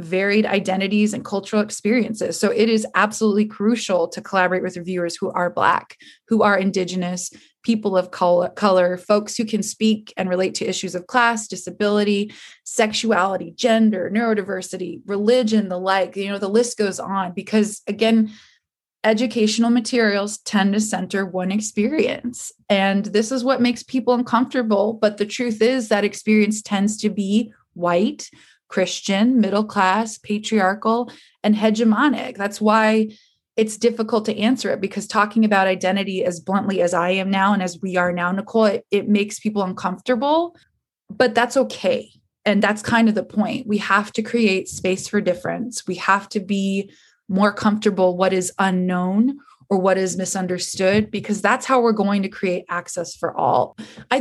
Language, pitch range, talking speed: English, 190-230 Hz, 160 wpm